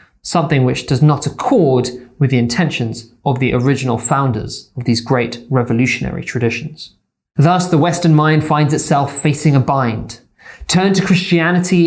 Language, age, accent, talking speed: English, 20-39, British, 145 wpm